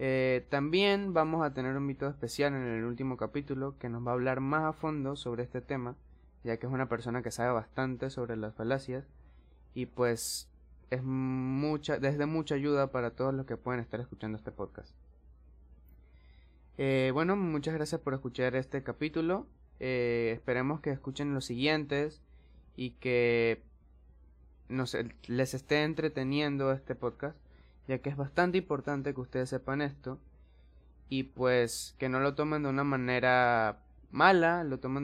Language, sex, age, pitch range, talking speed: Spanish, male, 20-39, 115-140 Hz, 160 wpm